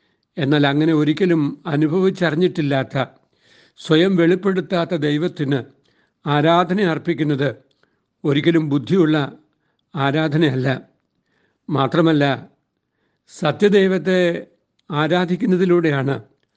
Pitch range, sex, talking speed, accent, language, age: 145-175 Hz, male, 55 wpm, native, Malayalam, 60-79